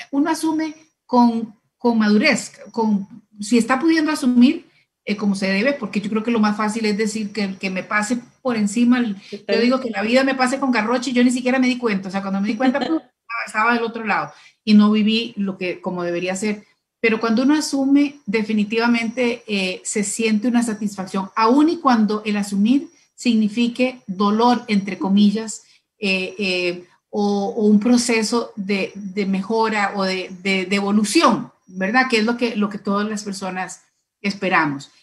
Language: Spanish